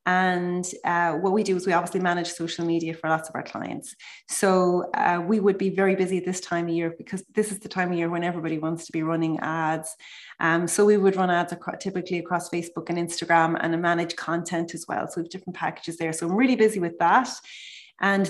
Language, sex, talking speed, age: English, female, 225 wpm, 30-49